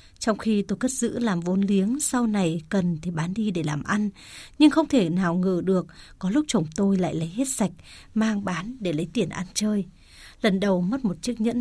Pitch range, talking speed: 175-225 Hz, 225 wpm